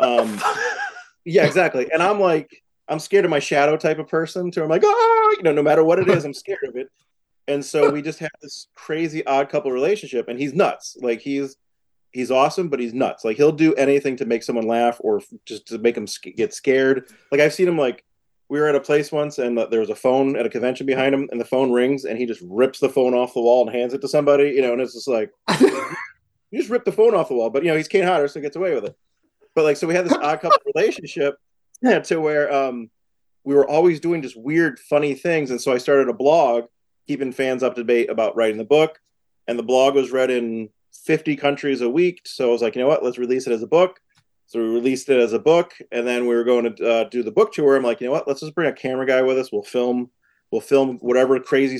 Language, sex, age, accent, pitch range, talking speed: English, male, 30-49, American, 125-155 Hz, 260 wpm